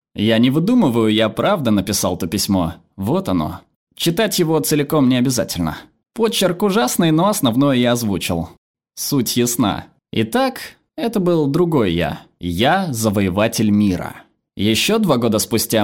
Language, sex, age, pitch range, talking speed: Russian, male, 20-39, 105-150 Hz, 135 wpm